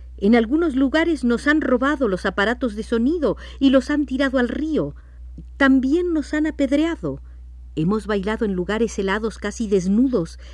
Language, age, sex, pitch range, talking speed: Spanish, 50-69, female, 140-220 Hz, 155 wpm